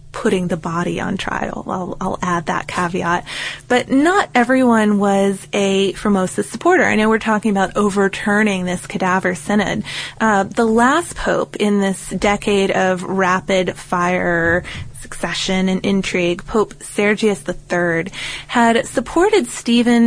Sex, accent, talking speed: female, American, 130 wpm